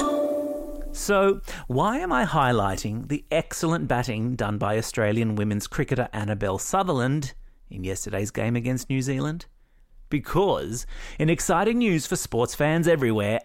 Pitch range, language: 115-170 Hz, English